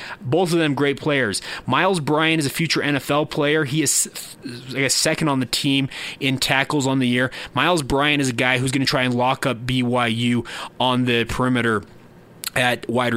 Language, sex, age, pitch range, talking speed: English, male, 20-39, 125-150 Hz, 195 wpm